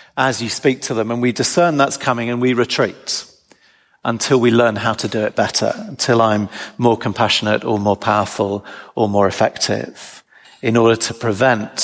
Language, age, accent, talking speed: English, 40-59, British, 175 wpm